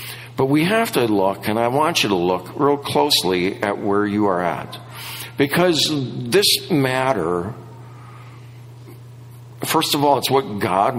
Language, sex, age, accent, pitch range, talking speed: English, male, 50-69, American, 120-140 Hz, 145 wpm